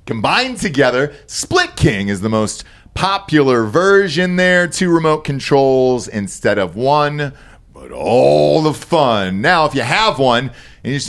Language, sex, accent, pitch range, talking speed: English, male, American, 110-160 Hz, 150 wpm